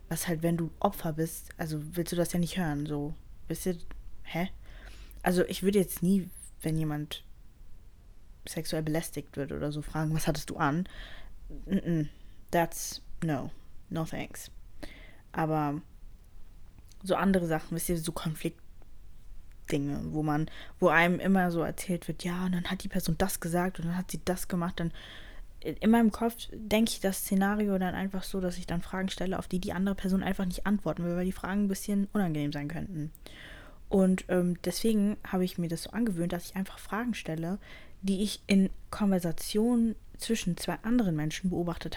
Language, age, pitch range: German, 20-39, 165-195 Hz